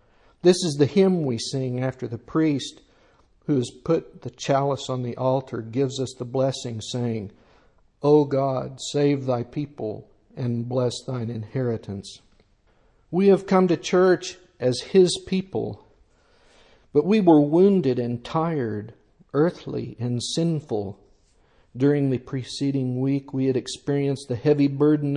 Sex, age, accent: male, 60-79, American